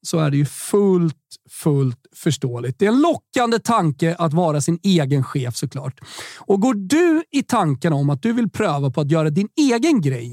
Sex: male